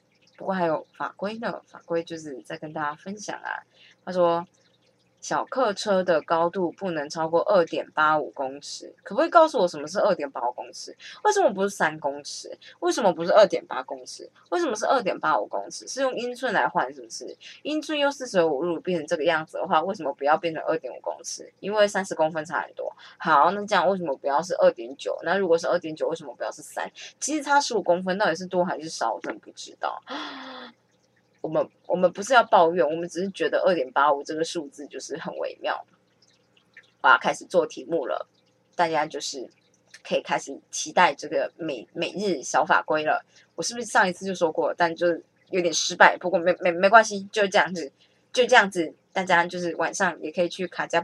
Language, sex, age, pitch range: Chinese, female, 20-39, 160-225 Hz